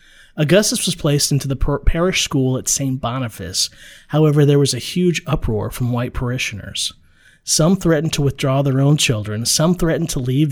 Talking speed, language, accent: 170 wpm, English, American